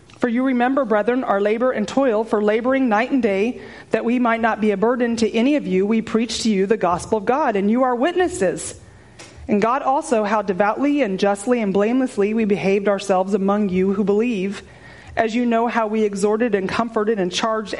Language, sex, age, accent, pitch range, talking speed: English, female, 30-49, American, 200-255 Hz, 210 wpm